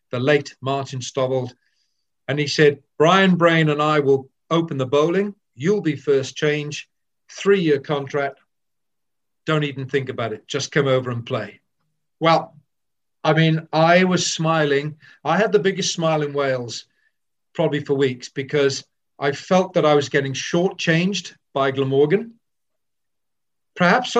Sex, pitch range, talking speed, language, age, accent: male, 130-155 Hz, 145 wpm, English, 40-59, British